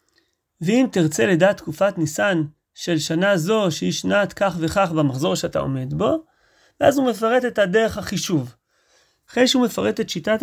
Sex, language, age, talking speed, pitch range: male, Hebrew, 40-59, 155 wpm, 180-255 Hz